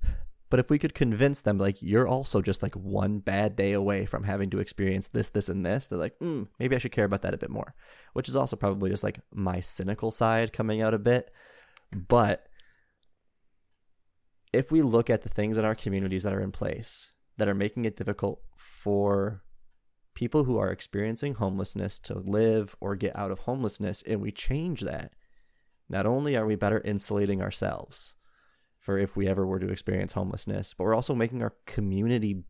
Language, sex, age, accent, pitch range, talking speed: English, male, 20-39, American, 95-110 Hz, 195 wpm